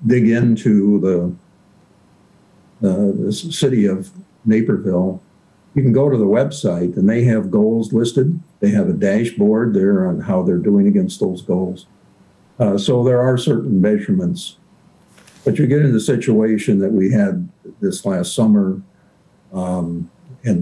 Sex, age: male, 60-79